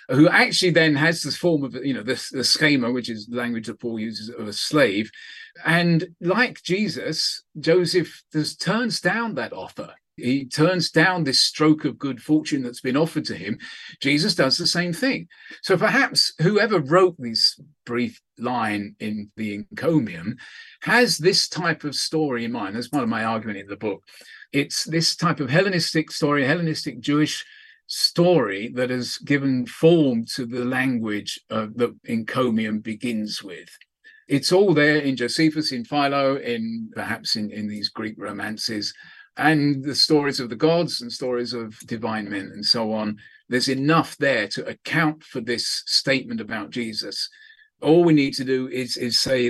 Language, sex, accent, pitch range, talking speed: English, male, British, 120-165 Hz, 170 wpm